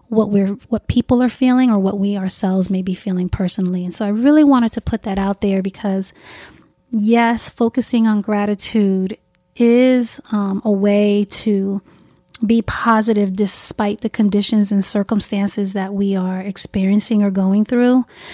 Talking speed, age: 155 wpm, 30-49